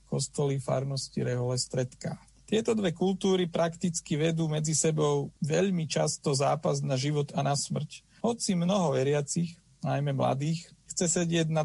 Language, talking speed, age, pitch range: Slovak, 140 wpm, 40-59, 135-170 Hz